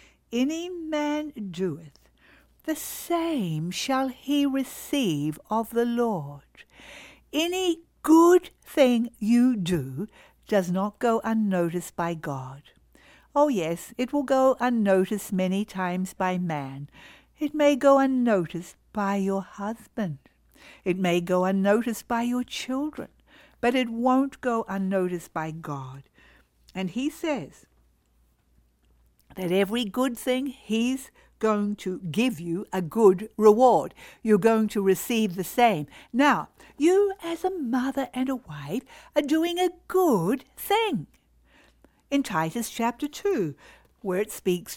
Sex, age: female, 60-79